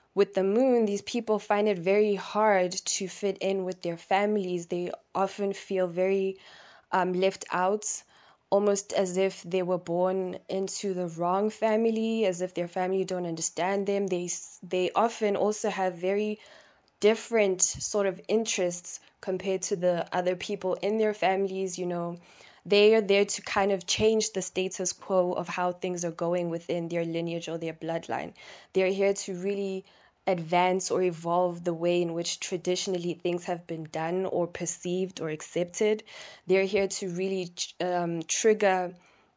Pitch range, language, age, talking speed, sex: 180-200 Hz, English, 10-29, 160 wpm, female